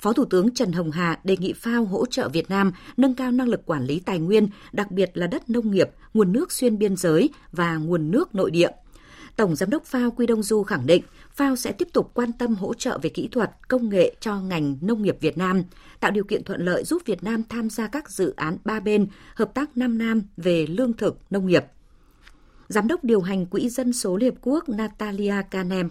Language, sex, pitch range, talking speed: Vietnamese, female, 175-245 Hz, 230 wpm